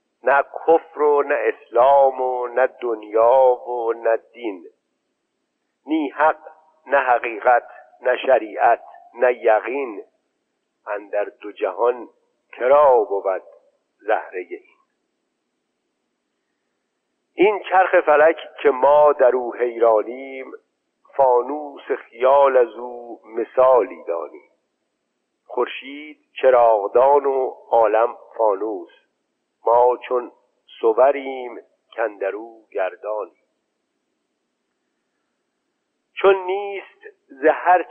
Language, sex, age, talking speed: Persian, male, 50-69, 85 wpm